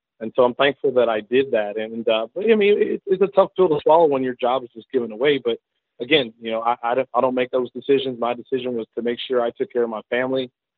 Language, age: English, 40-59